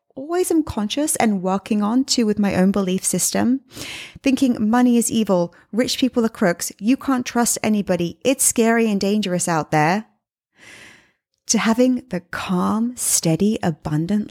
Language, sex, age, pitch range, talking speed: English, female, 30-49, 180-250 Hz, 150 wpm